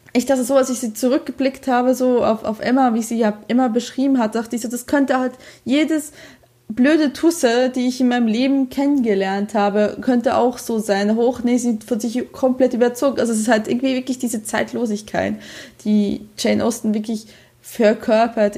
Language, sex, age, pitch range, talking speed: German, female, 20-39, 205-245 Hz, 185 wpm